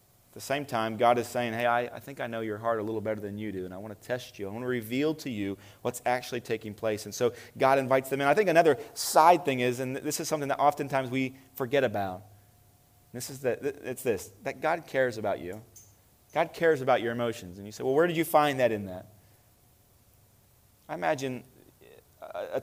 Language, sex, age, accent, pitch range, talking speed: English, male, 30-49, American, 115-150 Hz, 230 wpm